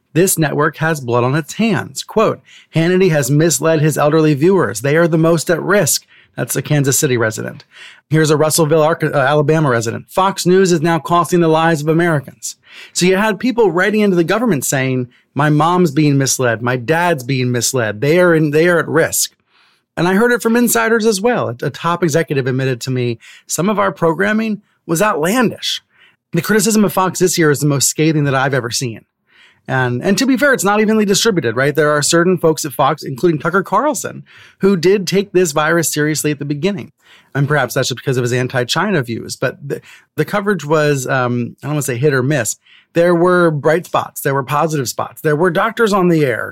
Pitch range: 135-180 Hz